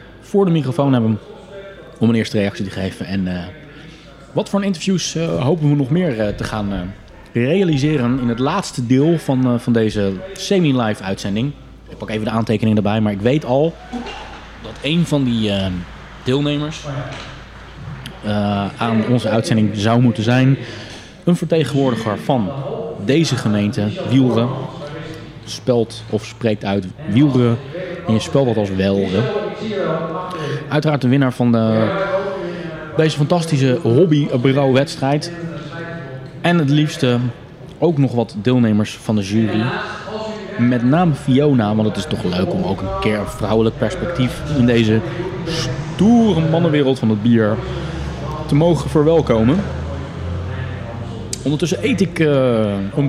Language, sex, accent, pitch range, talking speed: Dutch, male, Dutch, 110-155 Hz, 135 wpm